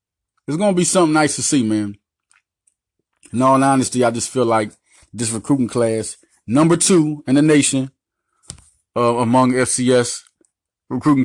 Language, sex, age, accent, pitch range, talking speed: English, male, 30-49, American, 115-145 Hz, 150 wpm